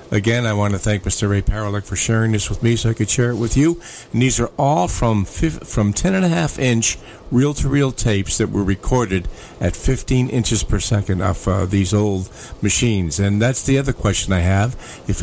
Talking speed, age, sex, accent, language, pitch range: 220 wpm, 50-69, male, American, English, 95-125 Hz